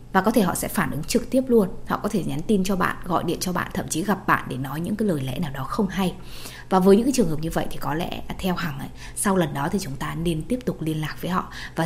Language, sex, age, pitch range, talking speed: Vietnamese, female, 20-39, 150-200 Hz, 320 wpm